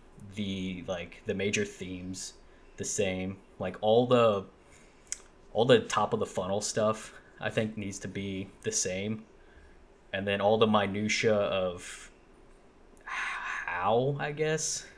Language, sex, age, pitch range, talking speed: English, male, 20-39, 95-110 Hz, 130 wpm